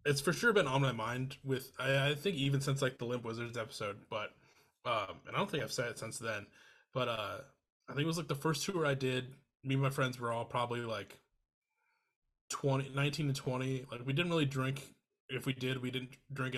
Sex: male